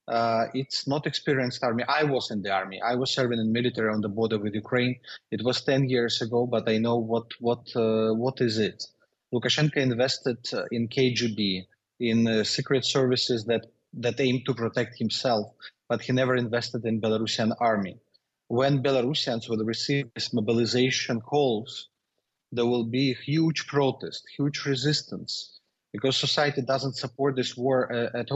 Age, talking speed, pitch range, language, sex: 30-49, 165 wpm, 115-140 Hz, English, male